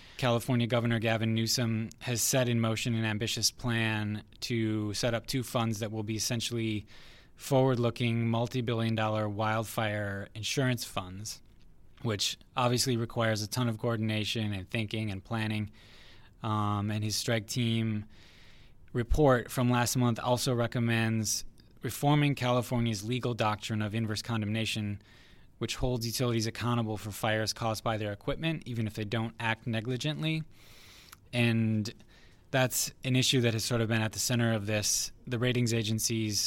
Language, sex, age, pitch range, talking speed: English, male, 20-39, 105-120 Hz, 145 wpm